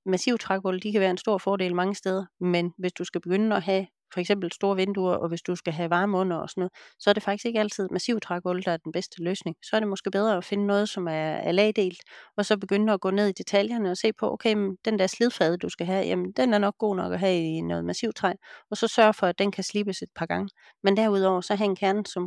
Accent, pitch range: native, 185-220 Hz